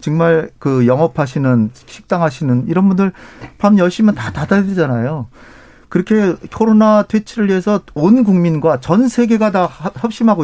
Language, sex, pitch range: Korean, male, 135-205 Hz